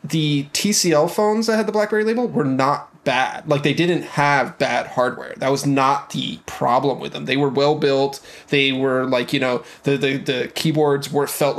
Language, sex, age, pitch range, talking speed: English, male, 20-39, 135-155 Hz, 200 wpm